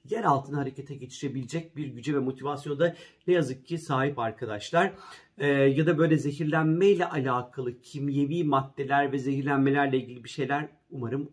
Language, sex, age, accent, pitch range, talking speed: Turkish, male, 50-69, native, 135-175 Hz, 155 wpm